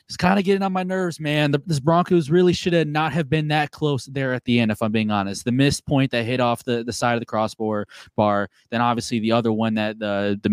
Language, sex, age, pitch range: English, male, 20-39, 115-175 Hz